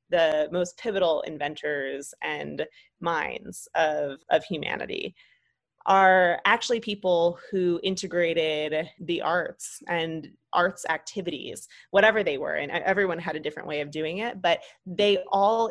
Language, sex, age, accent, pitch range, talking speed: English, female, 20-39, American, 160-195 Hz, 130 wpm